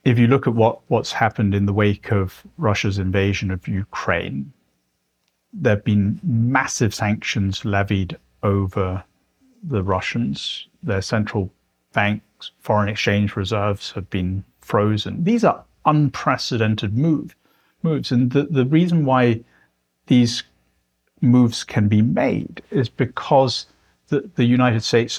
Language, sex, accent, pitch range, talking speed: English, male, British, 100-130 Hz, 125 wpm